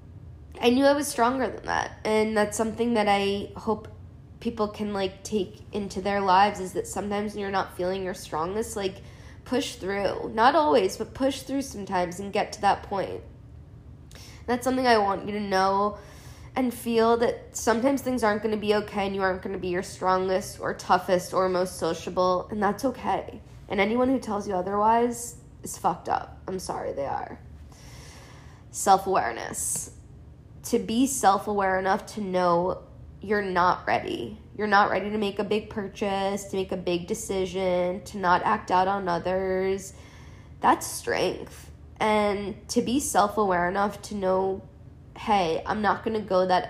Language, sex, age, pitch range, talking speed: English, female, 10-29, 190-220 Hz, 175 wpm